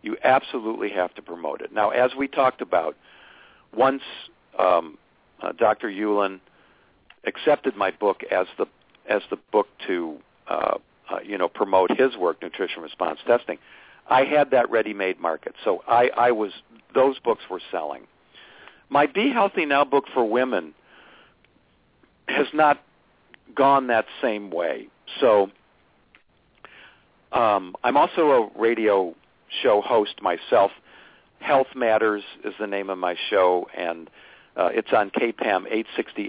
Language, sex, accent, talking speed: English, male, American, 140 wpm